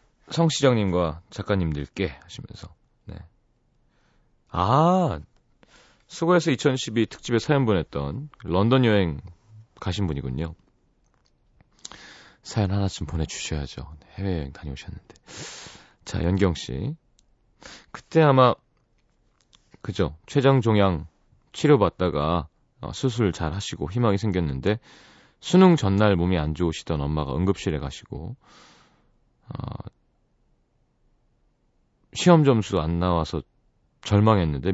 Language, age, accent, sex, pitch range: Korean, 30-49, native, male, 85-125 Hz